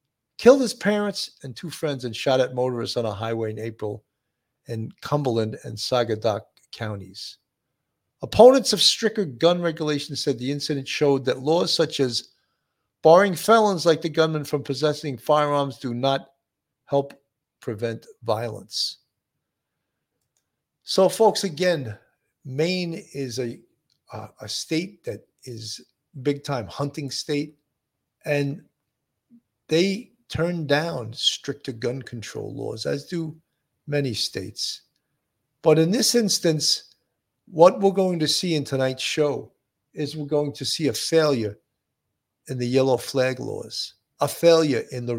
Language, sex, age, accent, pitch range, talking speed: English, male, 50-69, American, 125-165 Hz, 135 wpm